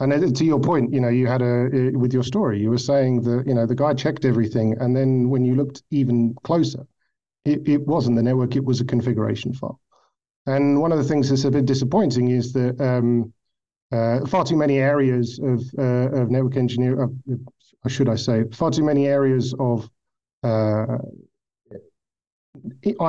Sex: male